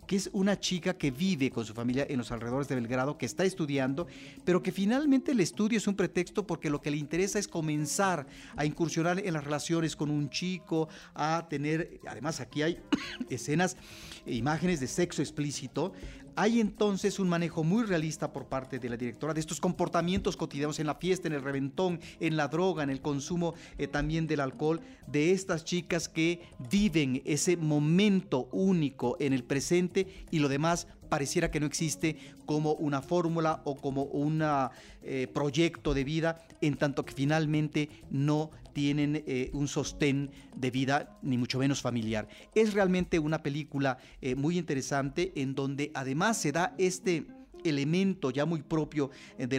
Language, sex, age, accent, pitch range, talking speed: Spanish, male, 40-59, Mexican, 140-175 Hz, 170 wpm